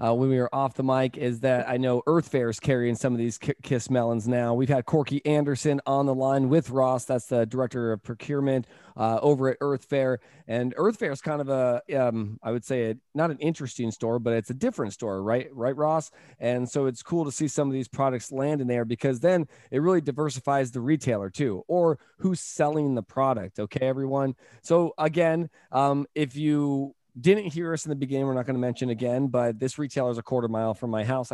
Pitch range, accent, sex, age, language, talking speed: 110-140 Hz, American, male, 20-39, English, 230 wpm